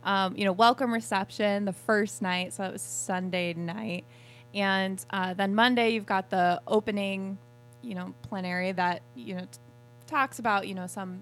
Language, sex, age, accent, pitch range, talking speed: English, female, 20-39, American, 180-215 Hz, 170 wpm